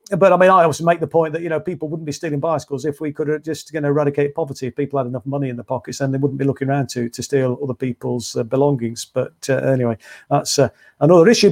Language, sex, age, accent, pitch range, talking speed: English, male, 50-69, British, 140-190 Hz, 255 wpm